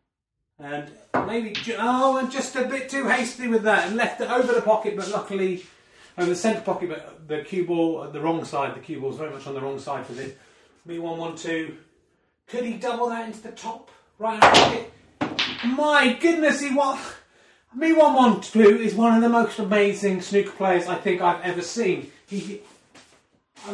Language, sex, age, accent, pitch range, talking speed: English, male, 30-49, British, 170-230 Hz, 195 wpm